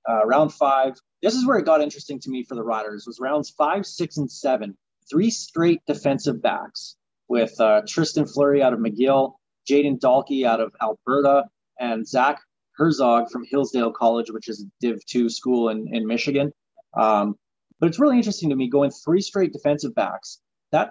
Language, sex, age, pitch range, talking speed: English, male, 30-49, 115-145 Hz, 185 wpm